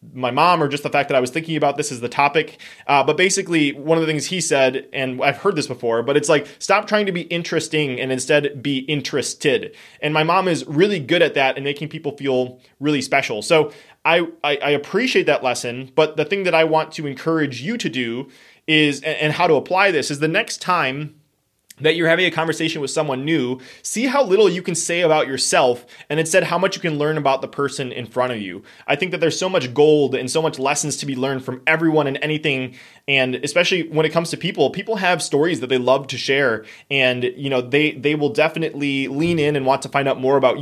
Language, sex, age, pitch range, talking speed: English, male, 20-39, 130-165 Hz, 240 wpm